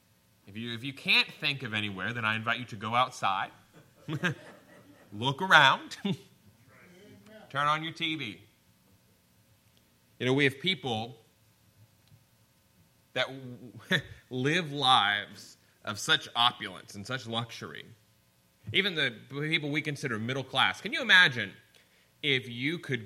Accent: American